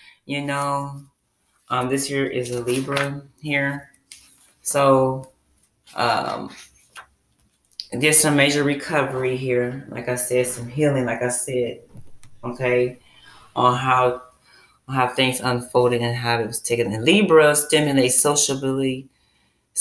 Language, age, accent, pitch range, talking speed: English, 20-39, American, 125-135 Hz, 120 wpm